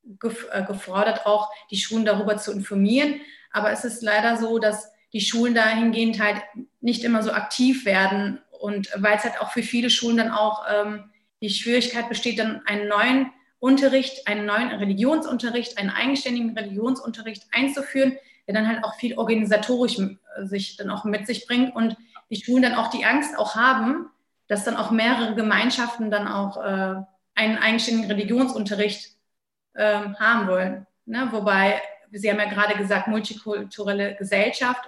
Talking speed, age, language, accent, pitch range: 155 wpm, 30-49, German, German, 205-245 Hz